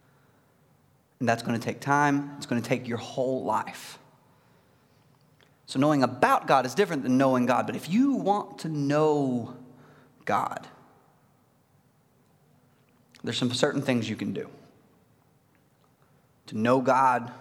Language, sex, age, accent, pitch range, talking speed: English, male, 20-39, American, 130-180 Hz, 135 wpm